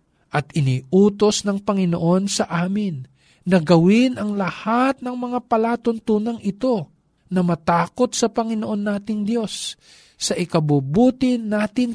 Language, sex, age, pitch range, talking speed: Filipino, male, 50-69, 150-215 Hz, 115 wpm